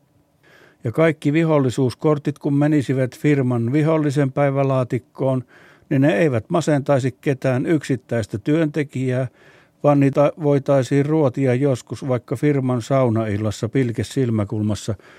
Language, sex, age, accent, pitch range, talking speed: Finnish, male, 60-79, native, 120-145 Hz, 95 wpm